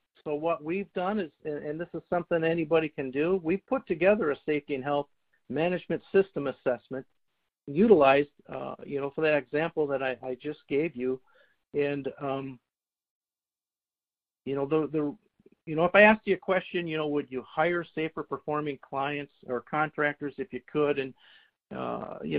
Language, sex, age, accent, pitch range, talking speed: English, male, 50-69, American, 135-165 Hz, 175 wpm